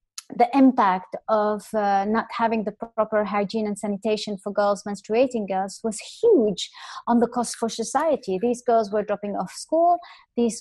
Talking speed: 165 wpm